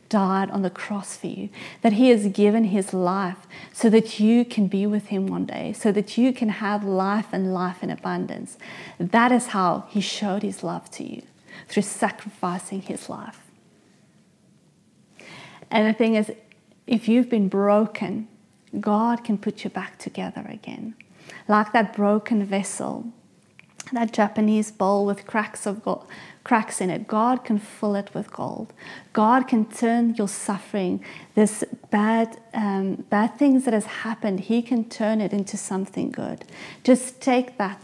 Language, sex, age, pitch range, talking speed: English, female, 30-49, 195-230 Hz, 160 wpm